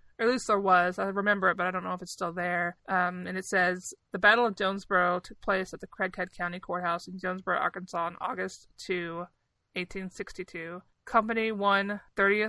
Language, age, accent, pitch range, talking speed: English, 20-39, American, 180-215 Hz, 190 wpm